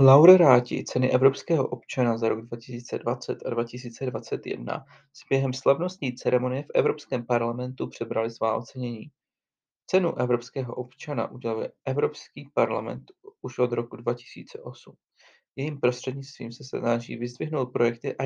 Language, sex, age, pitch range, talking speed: Czech, male, 40-59, 120-145 Hz, 120 wpm